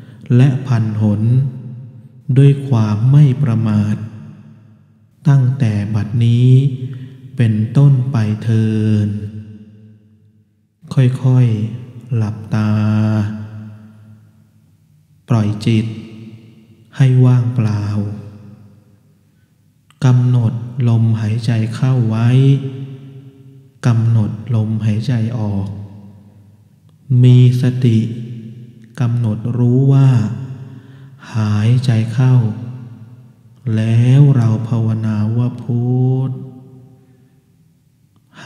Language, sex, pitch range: Thai, male, 110-130 Hz